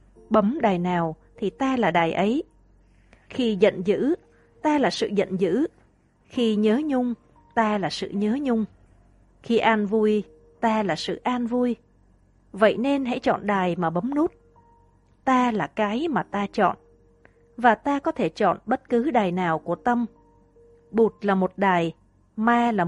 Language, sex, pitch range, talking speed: Vietnamese, female, 170-235 Hz, 165 wpm